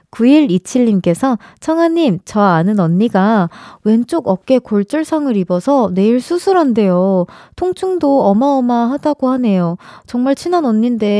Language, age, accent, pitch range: Korean, 20-39, native, 210-280 Hz